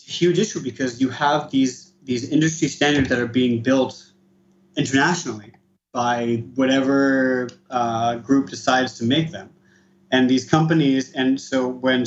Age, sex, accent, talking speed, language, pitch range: 30-49, male, American, 140 wpm, English, 120-150 Hz